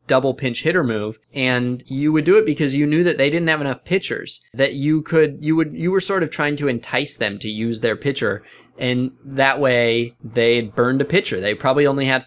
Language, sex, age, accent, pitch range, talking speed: English, male, 20-39, American, 115-155 Hz, 225 wpm